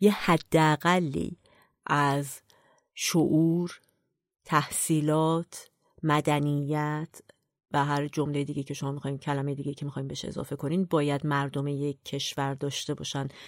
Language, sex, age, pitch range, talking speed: Persian, female, 30-49, 145-180 Hz, 115 wpm